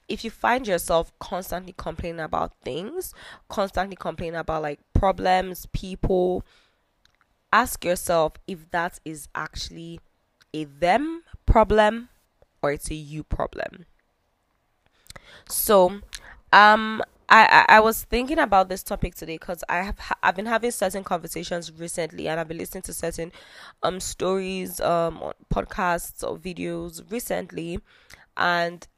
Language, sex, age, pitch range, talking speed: English, female, 10-29, 165-190 Hz, 125 wpm